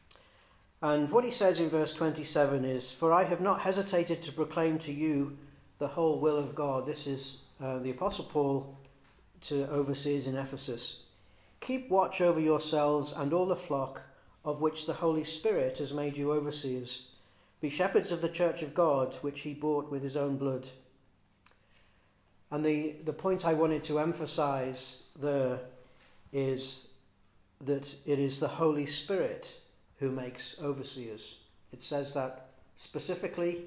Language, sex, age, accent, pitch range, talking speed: English, male, 40-59, British, 130-155 Hz, 155 wpm